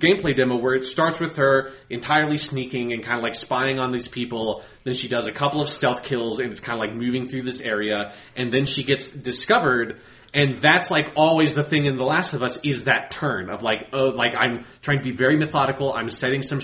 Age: 30-49